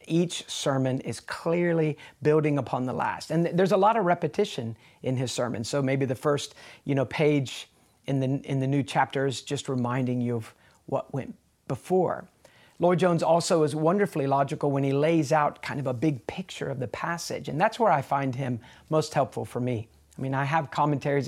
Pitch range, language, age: 130-165 Hz, English, 40-59